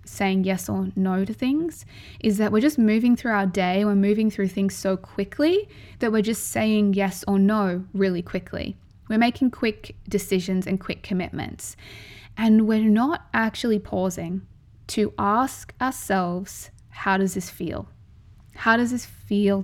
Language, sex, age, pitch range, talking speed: English, female, 20-39, 185-220 Hz, 160 wpm